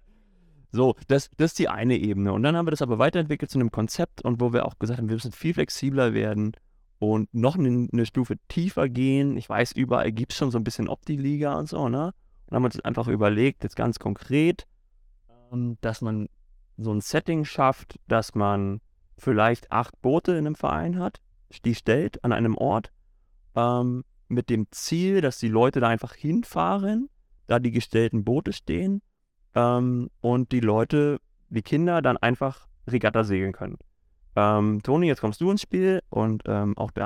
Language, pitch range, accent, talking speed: German, 115-155 Hz, German, 185 wpm